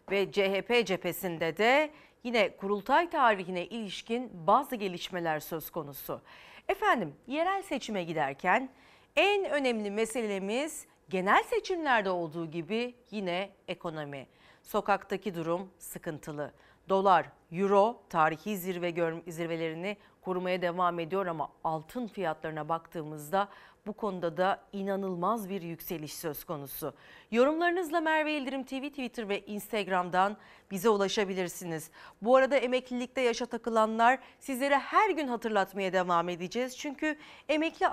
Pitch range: 180-255 Hz